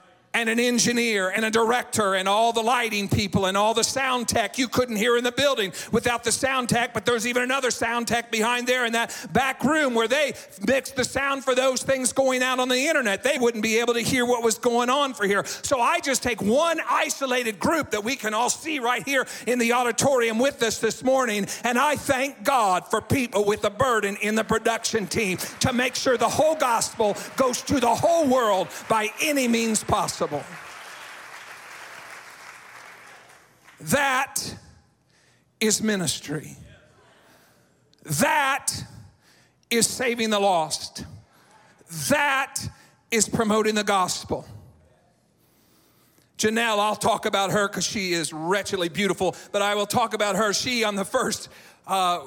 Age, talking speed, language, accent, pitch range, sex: 50-69, 170 wpm, English, American, 205-255 Hz, male